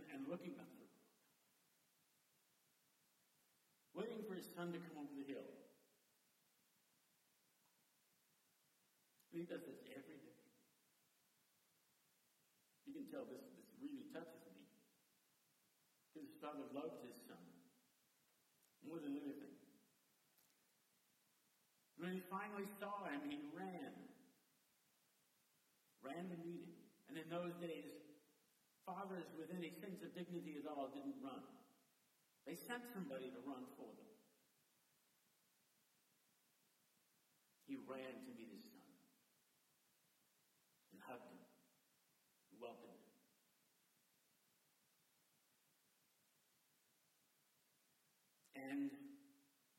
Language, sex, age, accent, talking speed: English, male, 60-79, American, 95 wpm